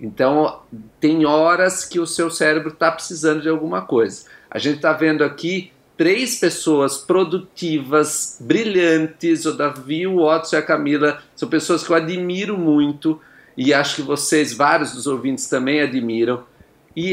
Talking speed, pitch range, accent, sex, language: 155 wpm, 140-165 Hz, Brazilian, male, Portuguese